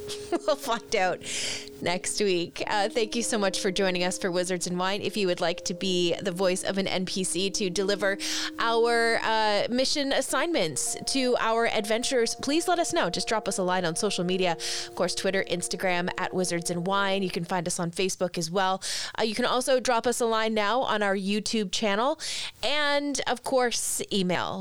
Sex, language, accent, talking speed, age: female, English, American, 195 wpm, 30-49